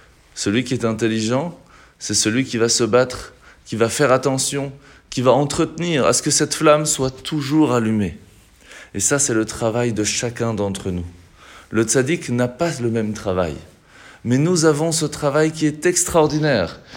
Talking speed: 175 wpm